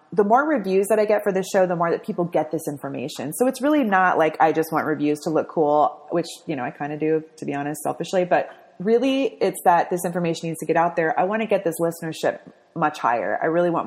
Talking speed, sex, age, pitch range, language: 265 wpm, female, 30-49, 160-210 Hz, English